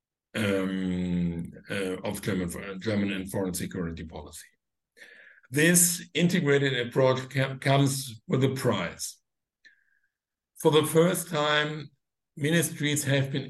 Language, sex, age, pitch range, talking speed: English, male, 60-79, 105-135 Hz, 105 wpm